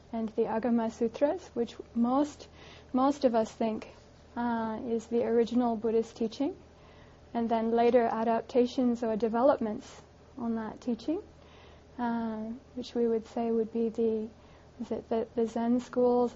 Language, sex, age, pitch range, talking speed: English, female, 30-49, 230-255 Hz, 145 wpm